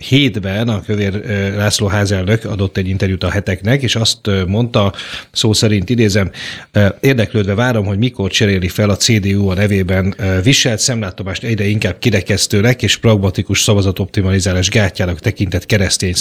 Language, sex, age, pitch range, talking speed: Hungarian, male, 30-49, 95-120 Hz, 135 wpm